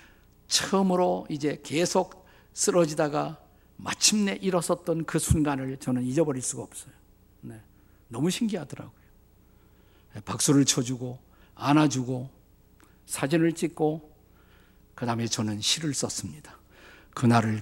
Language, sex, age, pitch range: Korean, male, 50-69, 105-165 Hz